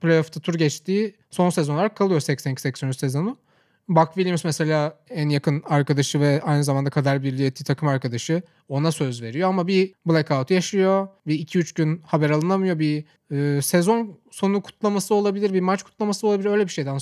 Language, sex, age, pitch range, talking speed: Turkish, male, 30-49, 150-190 Hz, 165 wpm